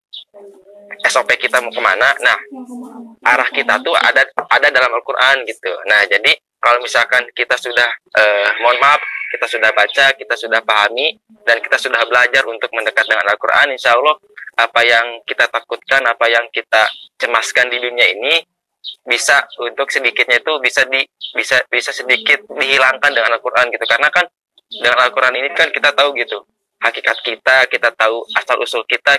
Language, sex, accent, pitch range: Indonesian, male, native, 115-160 Hz